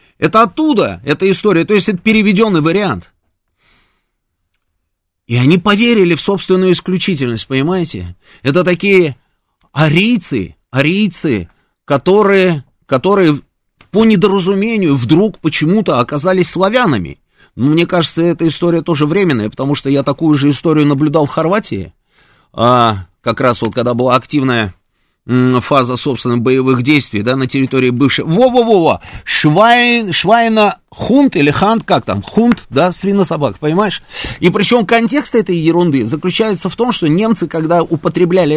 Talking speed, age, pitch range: 130 wpm, 30-49, 130-180 Hz